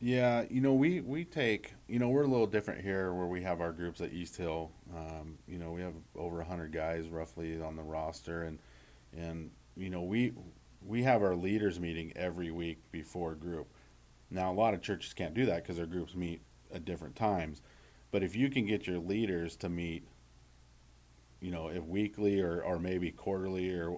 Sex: male